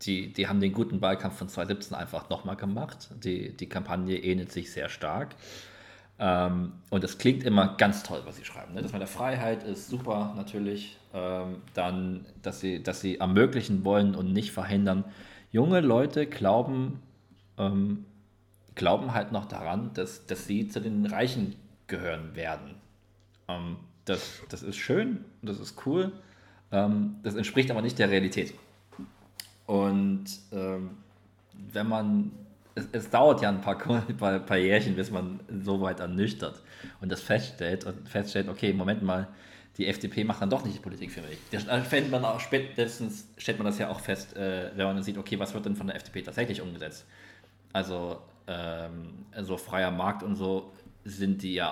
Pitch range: 95-105 Hz